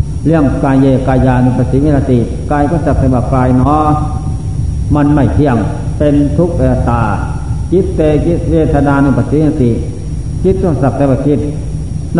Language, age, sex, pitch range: Thai, 60-79, male, 125-155 Hz